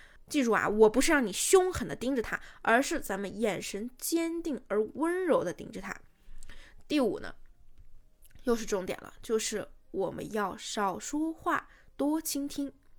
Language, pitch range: Chinese, 215-295 Hz